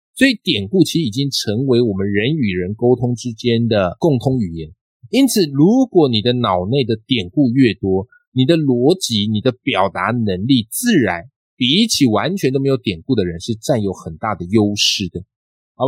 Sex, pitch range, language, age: male, 105-140 Hz, Chinese, 20-39